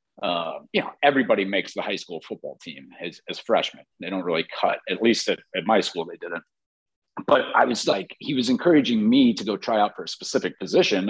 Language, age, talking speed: English, 40-59, 220 wpm